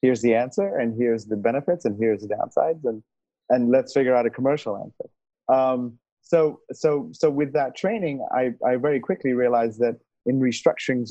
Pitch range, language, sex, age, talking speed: 110-130 Hz, English, male, 30-49, 185 wpm